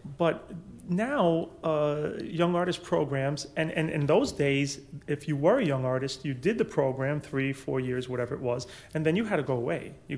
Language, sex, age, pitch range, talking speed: English, male, 30-49, 135-160 Hz, 205 wpm